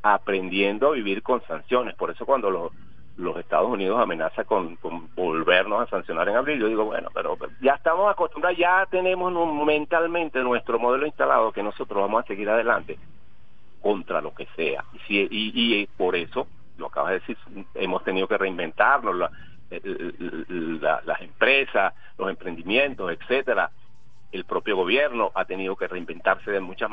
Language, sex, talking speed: Spanish, male, 170 wpm